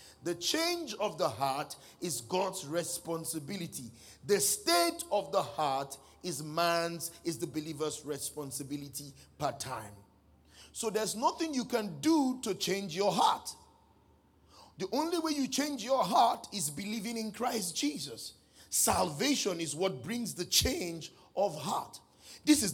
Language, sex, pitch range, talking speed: English, male, 145-210 Hz, 140 wpm